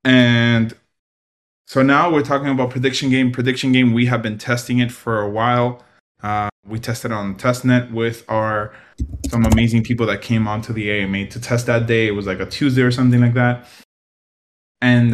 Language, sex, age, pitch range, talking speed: English, male, 20-39, 105-120 Hz, 190 wpm